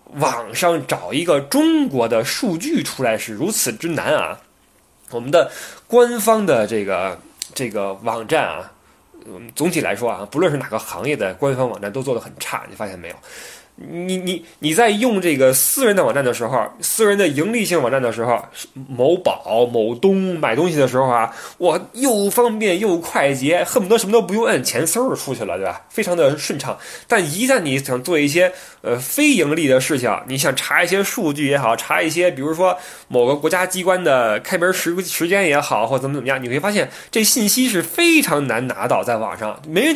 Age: 20-39